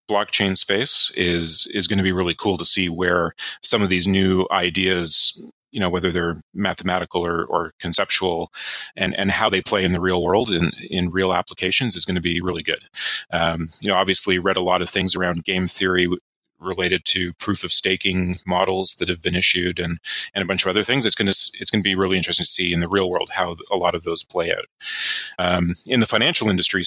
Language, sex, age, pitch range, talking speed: English, male, 30-49, 90-95 Hz, 225 wpm